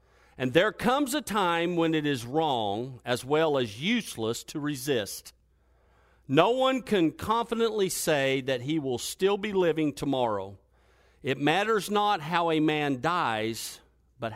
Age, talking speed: 50-69, 145 wpm